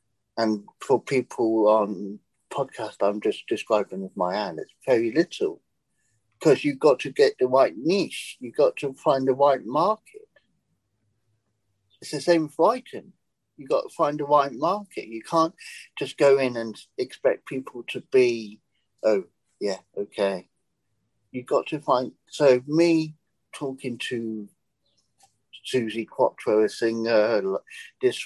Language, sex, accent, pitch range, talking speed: English, male, British, 110-155 Hz, 140 wpm